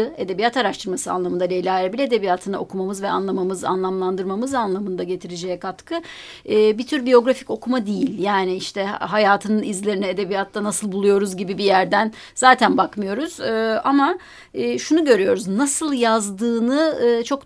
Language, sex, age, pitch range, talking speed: Turkish, female, 30-49, 195-245 Hz, 125 wpm